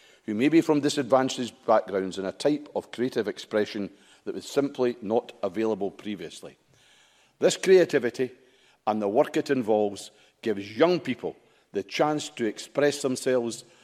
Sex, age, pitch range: male, 50-69, 110-150 Hz